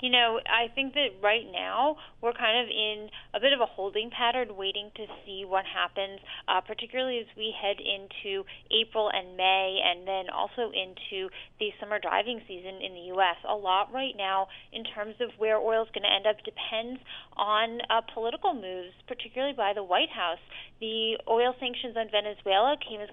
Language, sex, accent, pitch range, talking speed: English, female, American, 205-255 Hz, 190 wpm